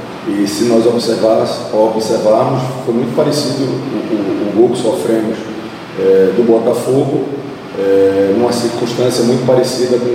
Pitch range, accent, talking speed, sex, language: 115-135 Hz, Brazilian, 125 wpm, male, Portuguese